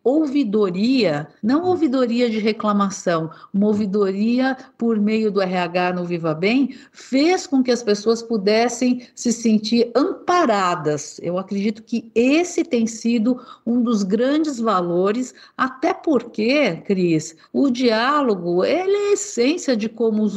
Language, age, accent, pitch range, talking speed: Portuguese, 50-69, Brazilian, 195-255 Hz, 135 wpm